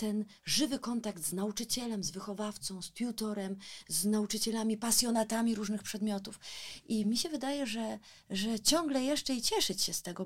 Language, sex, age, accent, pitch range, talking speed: Polish, female, 30-49, native, 205-255 Hz, 160 wpm